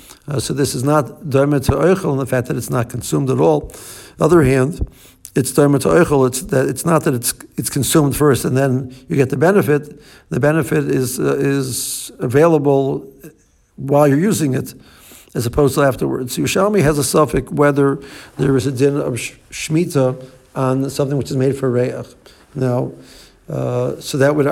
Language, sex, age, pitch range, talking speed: English, male, 60-79, 130-150 Hz, 170 wpm